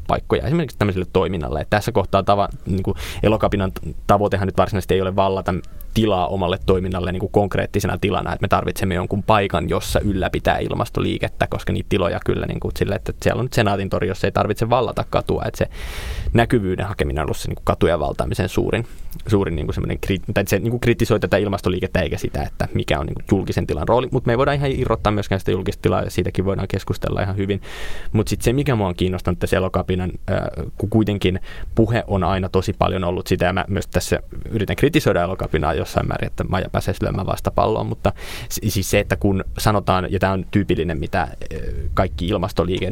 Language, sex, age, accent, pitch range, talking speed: Finnish, male, 20-39, native, 90-100 Hz, 185 wpm